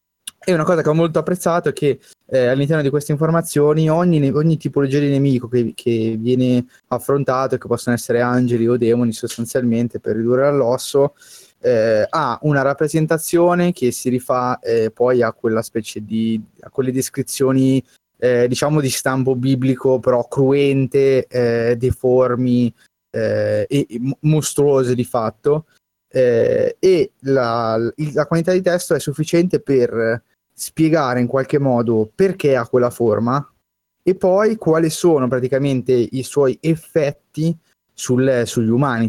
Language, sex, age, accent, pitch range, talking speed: Italian, male, 20-39, native, 120-140 Hz, 145 wpm